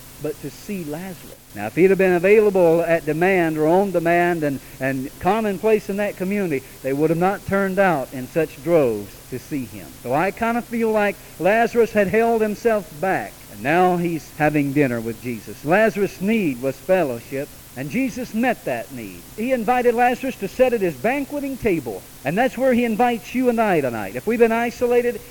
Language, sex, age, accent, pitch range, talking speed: English, male, 50-69, American, 145-230 Hz, 195 wpm